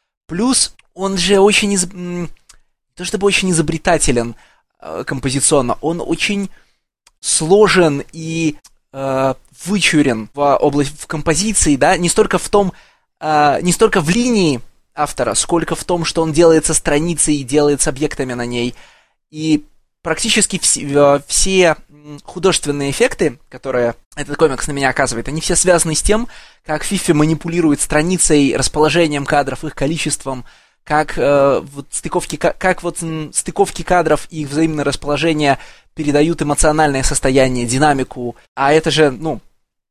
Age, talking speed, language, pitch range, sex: 20-39, 120 wpm, Russian, 140-175 Hz, male